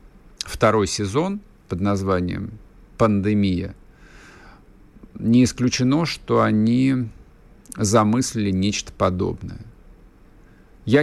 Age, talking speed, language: 50-69, 70 wpm, Russian